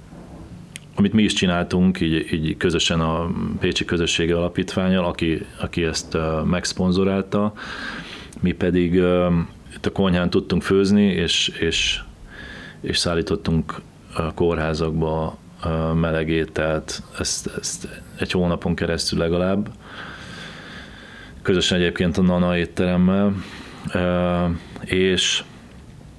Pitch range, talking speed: 85-90 Hz, 105 wpm